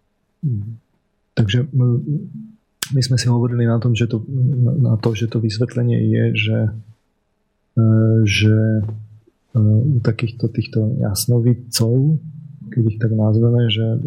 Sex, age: male, 30-49